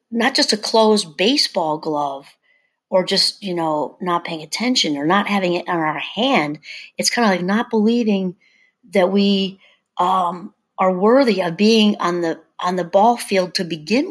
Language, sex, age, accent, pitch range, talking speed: English, female, 40-59, American, 175-240 Hz, 175 wpm